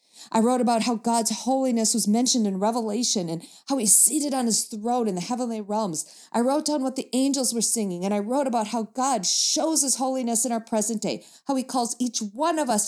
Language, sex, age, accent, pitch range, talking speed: English, female, 40-59, American, 185-250 Hz, 230 wpm